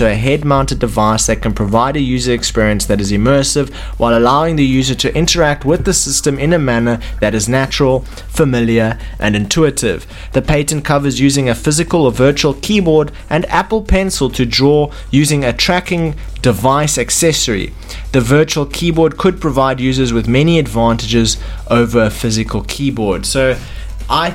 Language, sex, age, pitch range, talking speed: English, male, 20-39, 115-150 Hz, 155 wpm